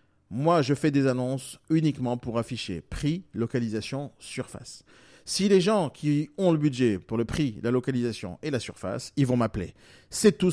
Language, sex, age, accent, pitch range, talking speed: French, male, 40-59, French, 115-155 Hz, 175 wpm